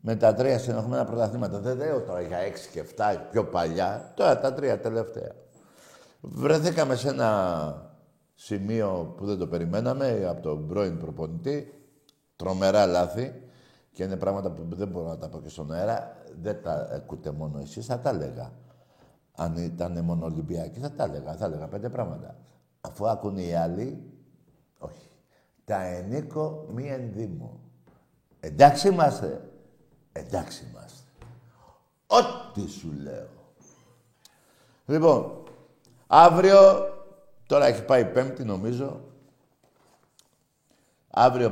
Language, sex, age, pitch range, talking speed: Greek, male, 60-79, 85-135 Hz, 130 wpm